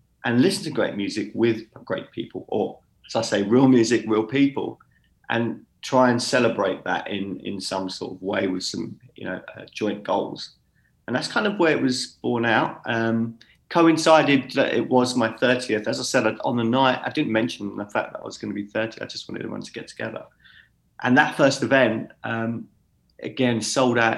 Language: English